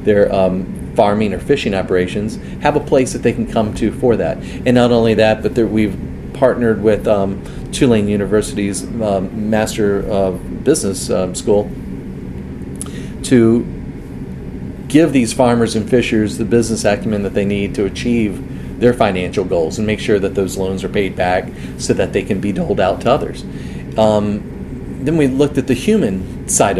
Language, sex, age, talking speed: English, male, 40-59, 170 wpm